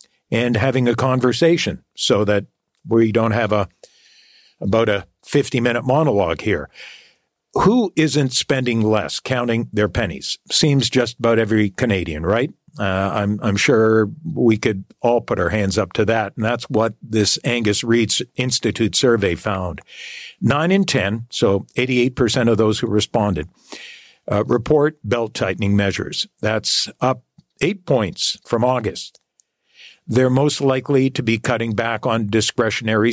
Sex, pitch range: male, 110-135 Hz